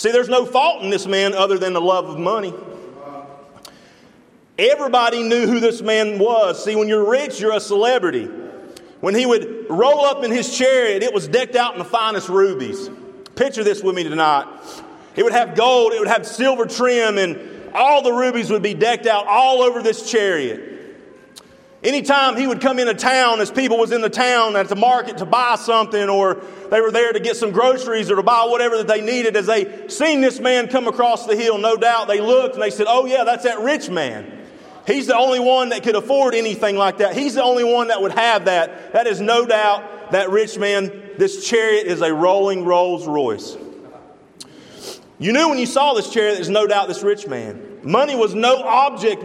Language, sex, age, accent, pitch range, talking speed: English, male, 40-59, American, 200-250 Hz, 210 wpm